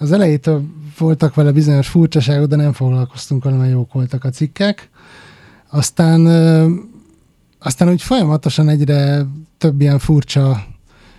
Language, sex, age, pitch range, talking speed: Hungarian, male, 30-49, 140-165 Hz, 120 wpm